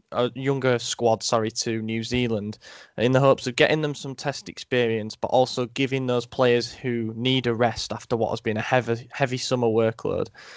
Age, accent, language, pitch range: 10-29, British, English, 110-125 Hz